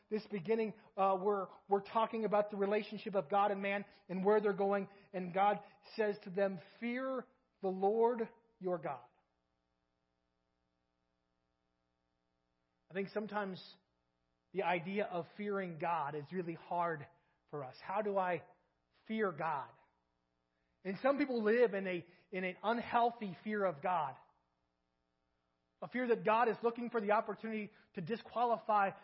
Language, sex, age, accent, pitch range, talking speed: English, male, 30-49, American, 170-230 Hz, 140 wpm